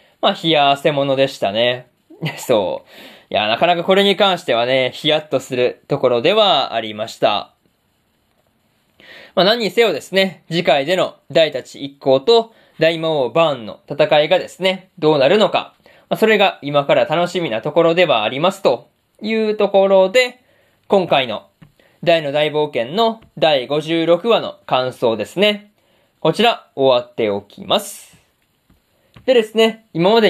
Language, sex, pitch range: Japanese, male, 145-210 Hz